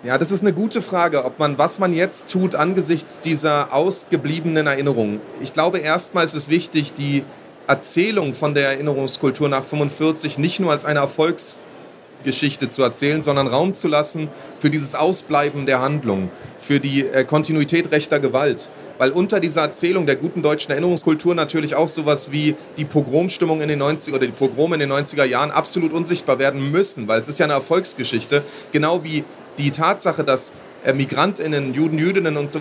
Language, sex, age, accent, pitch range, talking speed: German, male, 30-49, German, 140-165 Hz, 175 wpm